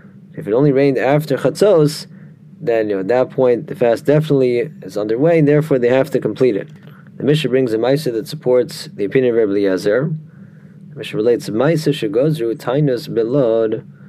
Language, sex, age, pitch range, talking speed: English, male, 30-49, 130-165 Hz, 185 wpm